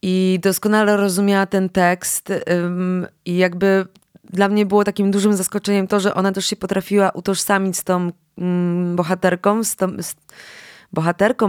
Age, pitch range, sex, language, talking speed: 20-39, 175-200 Hz, female, Polish, 125 wpm